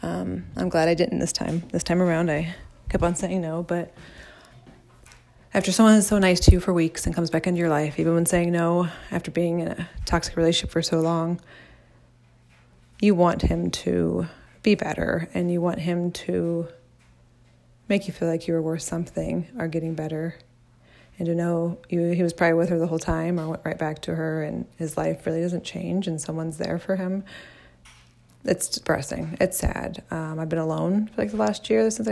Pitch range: 105-170 Hz